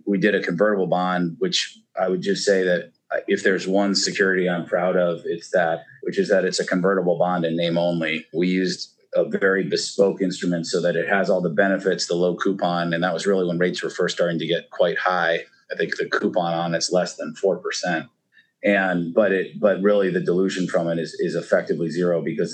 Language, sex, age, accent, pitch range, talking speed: English, male, 30-49, American, 85-100 Hz, 220 wpm